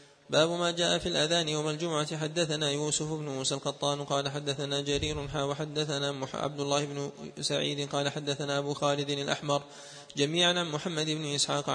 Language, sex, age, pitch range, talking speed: Arabic, male, 20-39, 140-155 Hz, 150 wpm